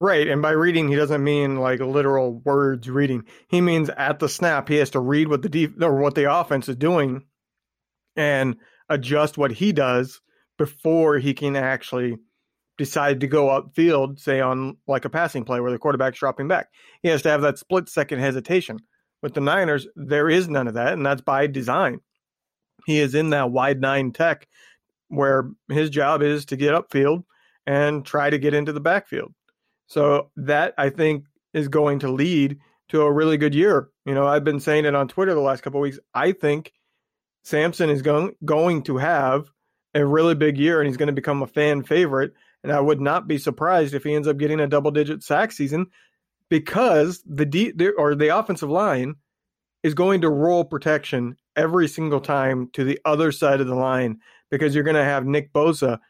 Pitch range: 140-155 Hz